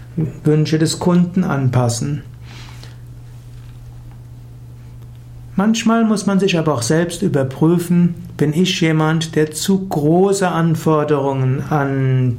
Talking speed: 95 wpm